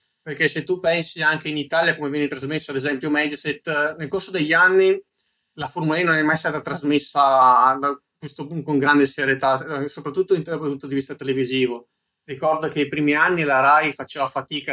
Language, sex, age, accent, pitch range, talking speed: Italian, male, 20-39, native, 140-155 Hz, 175 wpm